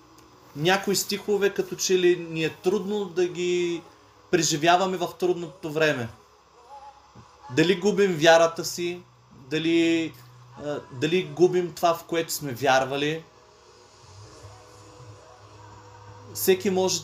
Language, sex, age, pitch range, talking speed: Bulgarian, male, 30-49, 125-170 Hz, 100 wpm